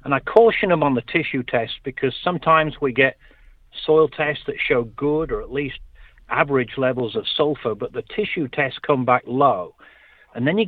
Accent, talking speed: British, 190 wpm